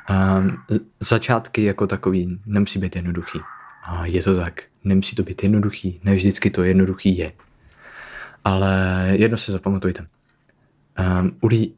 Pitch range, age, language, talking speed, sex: 90-100 Hz, 20-39, Czech, 125 wpm, male